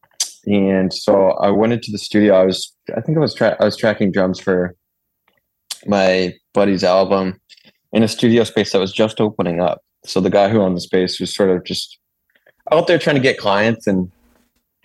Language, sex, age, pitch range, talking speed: English, male, 20-39, 90-105 Hz, 200 wpm